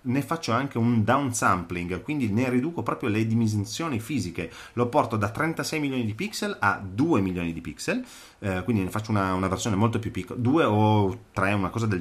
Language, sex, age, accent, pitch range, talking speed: Italian, male, 30-49, native, 95-120 Hz, 200 wpm